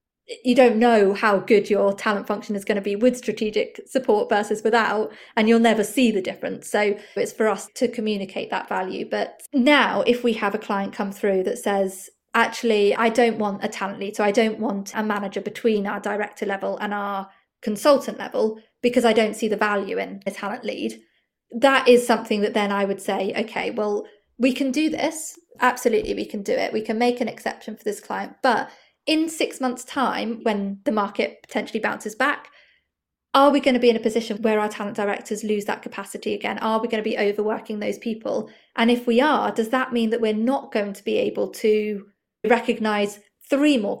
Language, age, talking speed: English, 30-49, 210 wpm